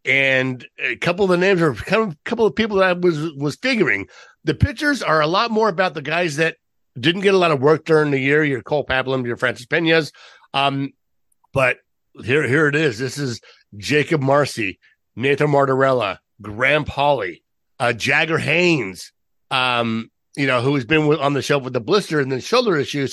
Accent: American